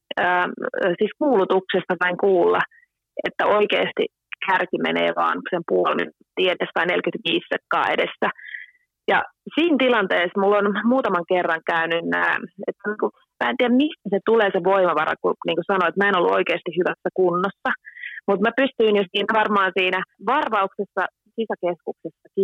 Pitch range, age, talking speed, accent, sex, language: 180-210 Hz, 30-49, 125 wpm, native, female, Finnish